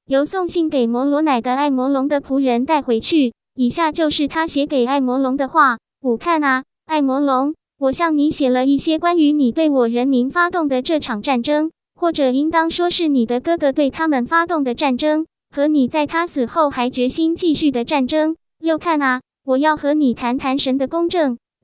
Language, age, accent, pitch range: Chinese, 20-39, American, 255-315 Hz